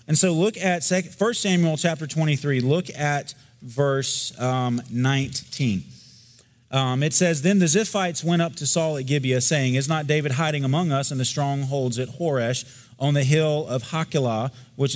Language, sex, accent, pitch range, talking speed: English, male, American, 130-160 Hz, 165 wpm